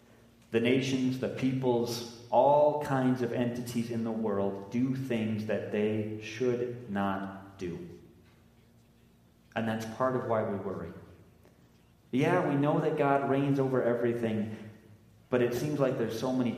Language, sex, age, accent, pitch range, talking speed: English, male, 30-49, American, 110-130 Hz, 145 wpm